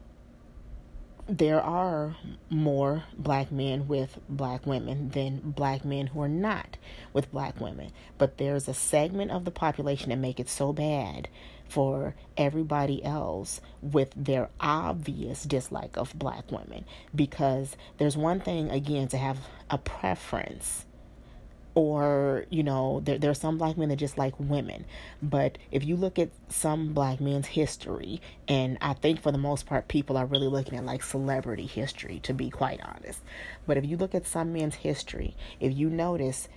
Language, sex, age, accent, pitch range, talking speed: English, female, 30-49, American, 135-150 Hz, 165 wpm